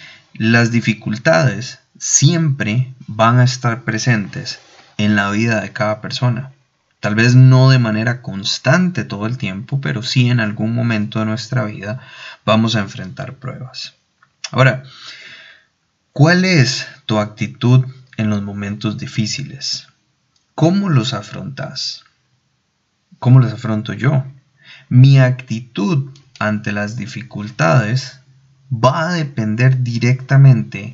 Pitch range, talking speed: 110-135 Hz, 115 wpm